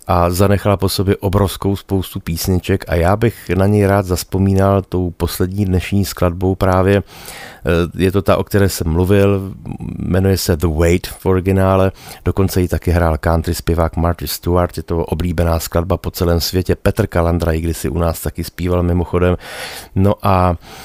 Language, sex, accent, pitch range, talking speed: Czech, male, native, 85-105 Hz, 170 wpm